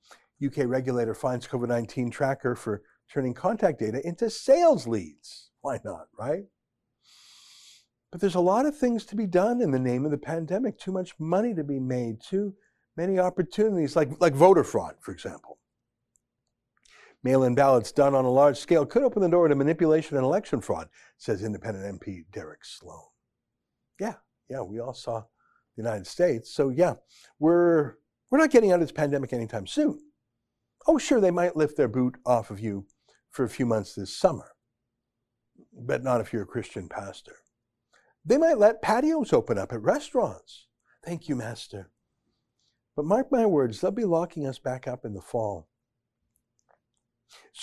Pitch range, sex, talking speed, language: 125-185 Hz, male, 170 wpm, English